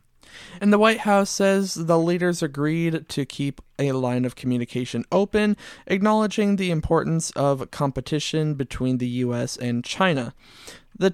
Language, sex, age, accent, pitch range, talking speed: English, male, 20-39, American, 140-195 Hz, 140 wpm